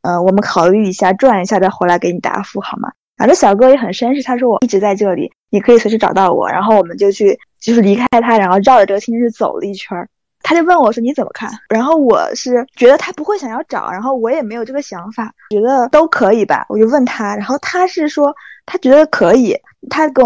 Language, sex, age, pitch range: Chinese, female, 20-39, 205-255 Hz